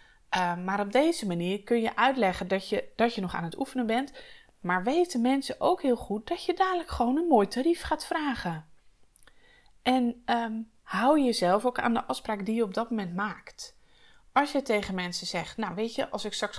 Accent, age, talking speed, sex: Dutch, 20-39, 200 wpm, female